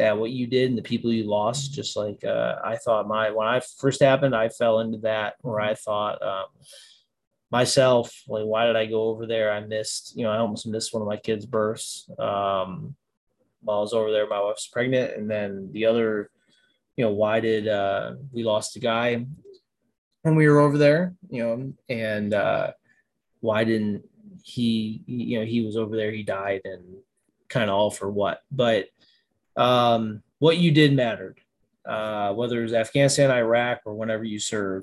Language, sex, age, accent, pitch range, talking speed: English, male, 20-39, American, 105-125 Hz, 190 wpm